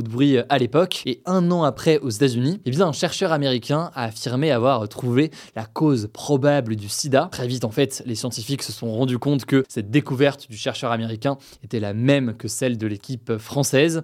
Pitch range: 120-145 Hz